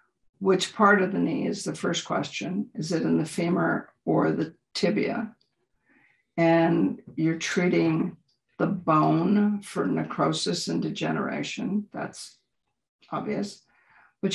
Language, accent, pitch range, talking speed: English, American, 170-210 Hz, 120 wpm